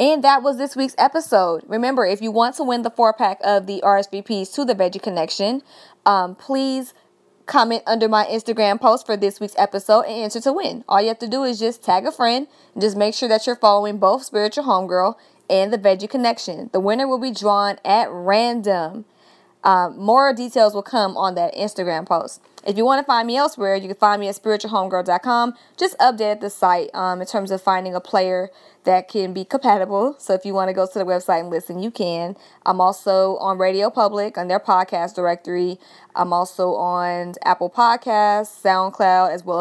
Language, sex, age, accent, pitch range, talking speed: English, female, 20-39, American, 185-235 Hz, 200 wpm